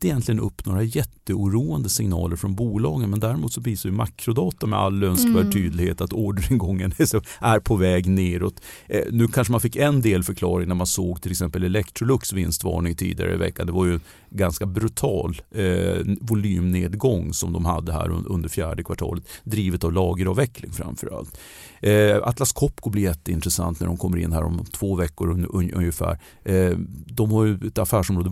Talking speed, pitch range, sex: 165 wpm, 90-105 Hz, male